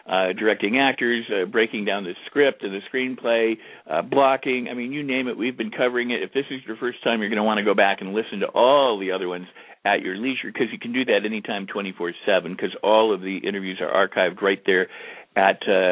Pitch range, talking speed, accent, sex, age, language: 100-125 Hz, 230 wpm, American, male, 50-69, English